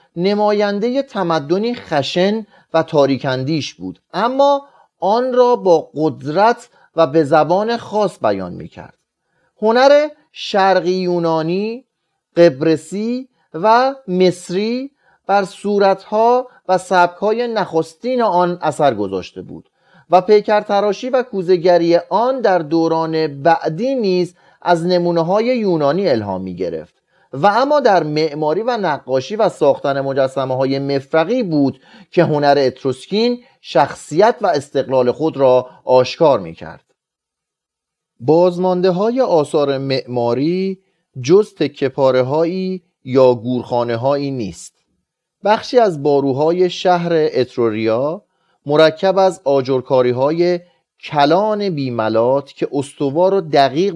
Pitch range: 140-200 Hz